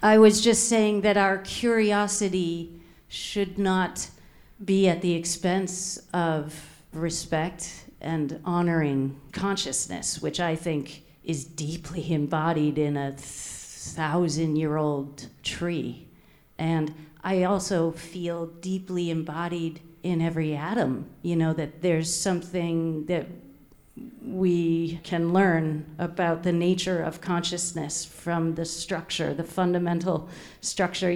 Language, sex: English, female